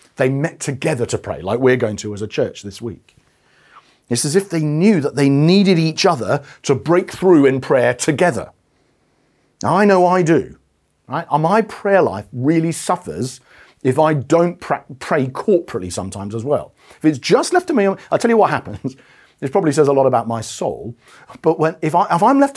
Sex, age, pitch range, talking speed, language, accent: male, 40-59, 130-180 Hz, 200 wpm, English, British